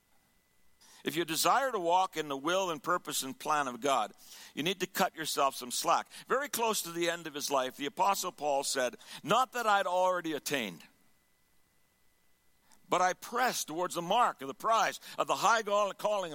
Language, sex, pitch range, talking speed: English, male, 150-205 Hz, 185 wpm